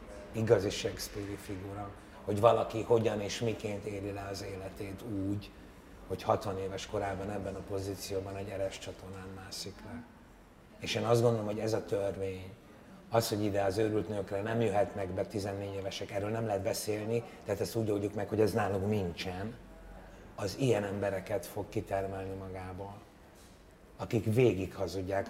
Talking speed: 155 wpm